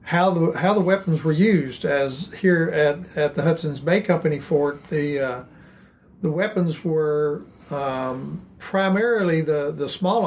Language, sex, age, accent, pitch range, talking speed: English, male, 60-79, American, 140-170 Hz, 150 wpm